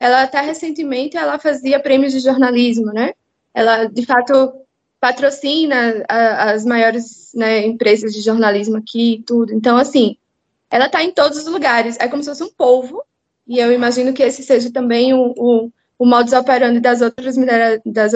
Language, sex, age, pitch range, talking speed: Portuguese, female, 20-39, 235-295 Hz, 160 wpm